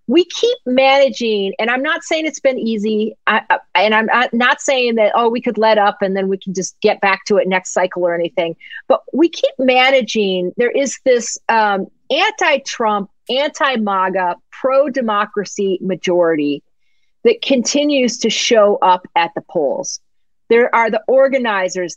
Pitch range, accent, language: 195-270 Hz, American, English